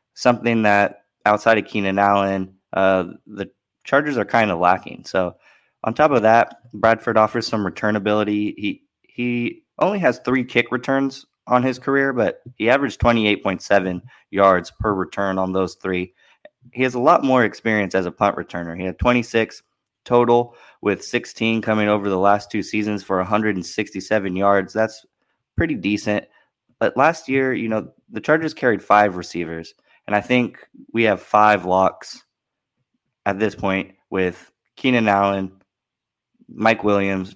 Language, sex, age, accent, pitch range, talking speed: English, male, 20-39, American, 95-115 Hz, 155 wpm